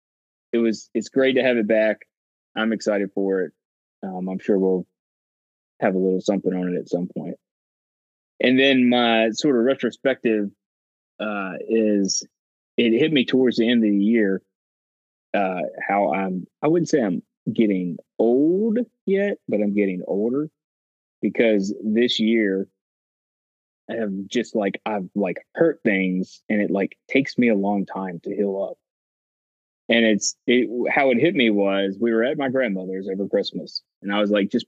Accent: American